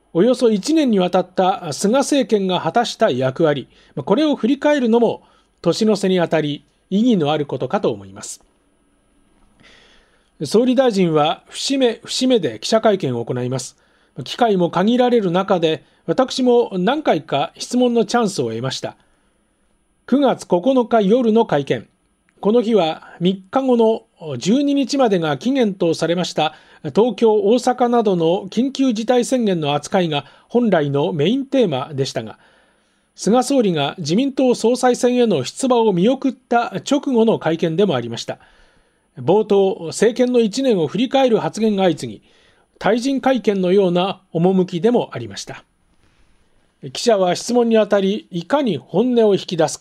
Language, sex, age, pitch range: Japanese, male, 40-59, 165-245 Hz